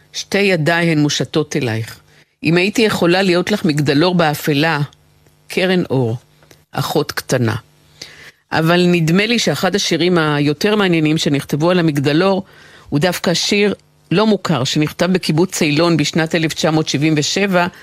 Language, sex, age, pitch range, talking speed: Hebrew, female, 50-69, 150-180 Hz, 120 wpm